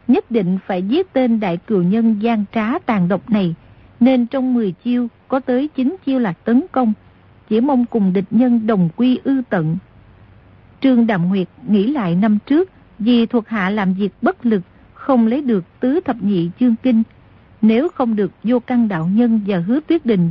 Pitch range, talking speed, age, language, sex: 195-255 Hz, 195 wpm, 50-69, Vietnamese, female